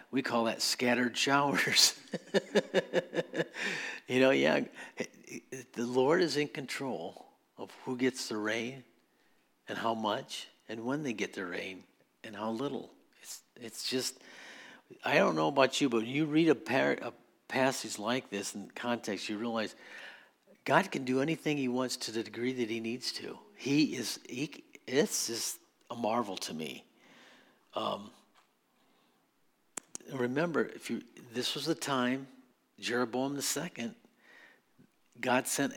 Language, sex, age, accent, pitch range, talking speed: English, male, 50-69, American, 110-130 Hz, 150 wpm